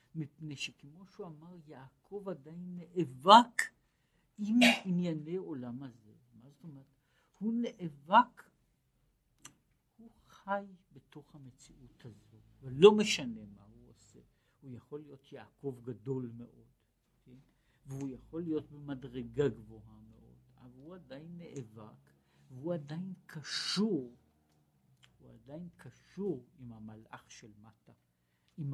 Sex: male